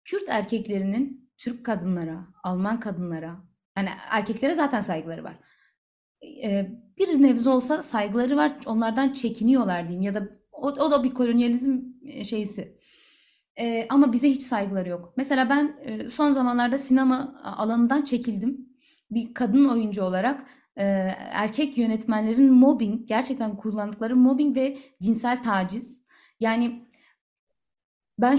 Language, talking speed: Turkish, 115 wpm